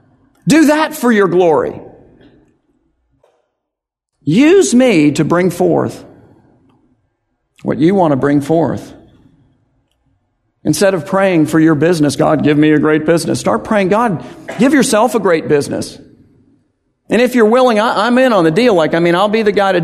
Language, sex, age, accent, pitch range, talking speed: English, male, 50-69, American, 140-210 Hz, 160 wpm